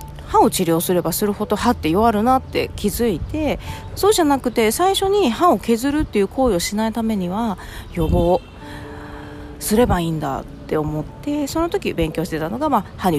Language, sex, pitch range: Japanese, female, 170-280 Hz